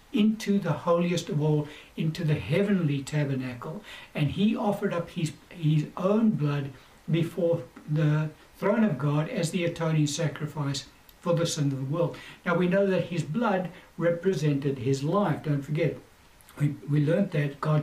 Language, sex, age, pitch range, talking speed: English, male, 60-79, 150-185 Hz, 160 wpm